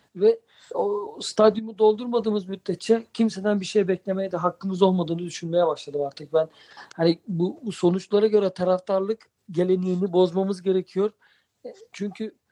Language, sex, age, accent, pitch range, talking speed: Turkish, male, 50-69, native, 175-205 Hz, 125 wpm